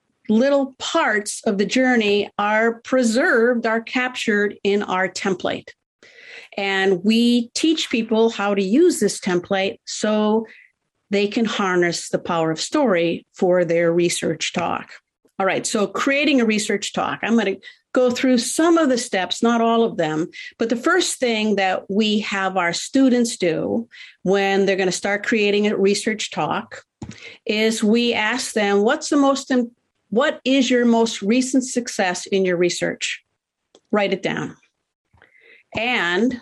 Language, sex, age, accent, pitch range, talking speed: English, female, 50-69, American, 195-260 Hz, 155 wpm